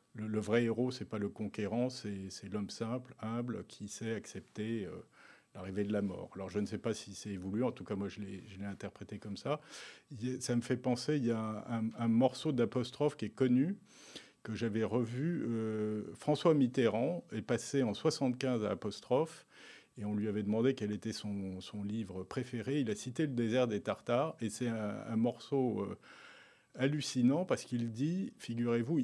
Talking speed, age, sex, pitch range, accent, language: 205 wpm, 40-59, male, 105-130 Hz, French, French